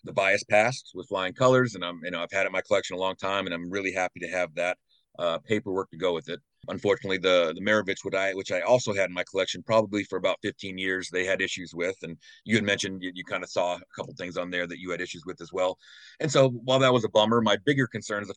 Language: English